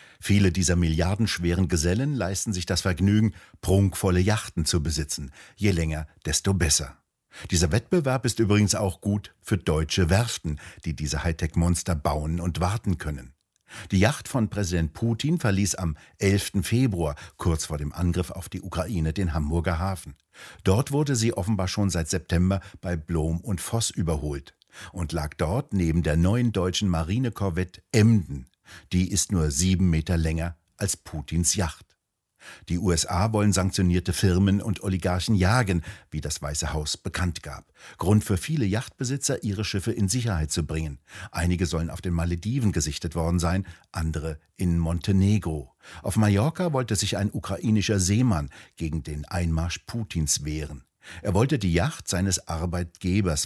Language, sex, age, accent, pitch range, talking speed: German, male, 60-79, German, 80-105 Hz, 150 wpm